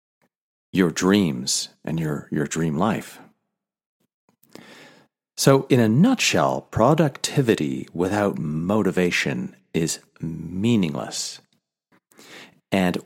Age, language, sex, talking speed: 50-69, English, male, 80 wpm